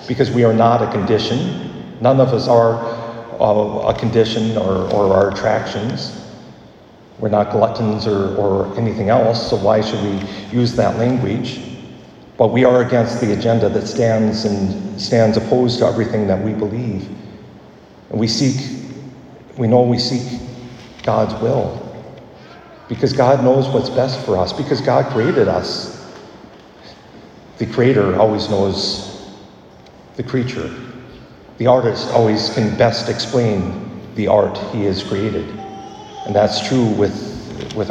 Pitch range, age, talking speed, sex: 110-135 Hz, 50-69, 140 wpm, male